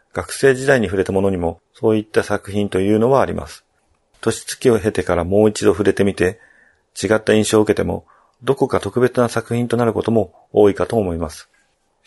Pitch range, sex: 100-125 Hz, male